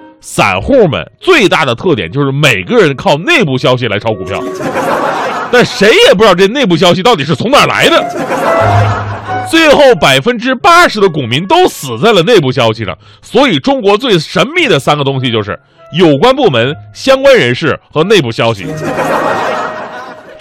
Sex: male